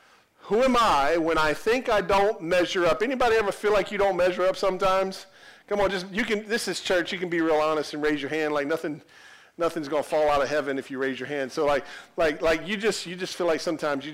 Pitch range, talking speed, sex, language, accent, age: 145-185 Hz, 260 wpm, male, English, American, 40-59